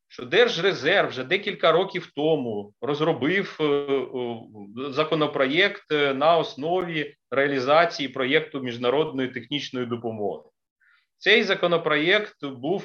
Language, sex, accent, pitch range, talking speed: Ukrainian, male, native, 125-175 Hz, 85 wpm